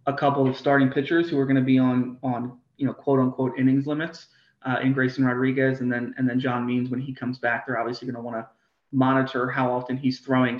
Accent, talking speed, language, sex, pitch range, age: American, 245 wpm, English, male, 125-140 Hz, 30-49